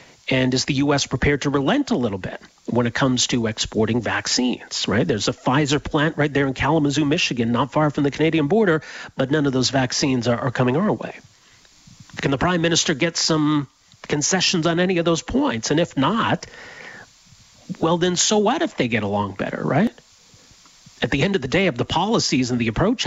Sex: male